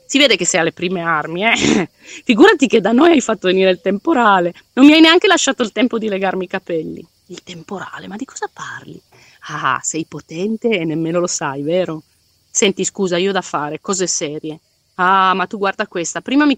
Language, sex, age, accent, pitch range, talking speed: Italian, female, 30-49, native, 180-255 Hz, 205 wpm